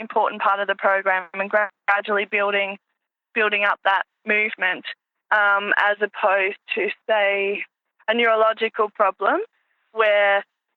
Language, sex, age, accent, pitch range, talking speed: English, female, 10-29, Australian, 200-245 Hz, 115 wpm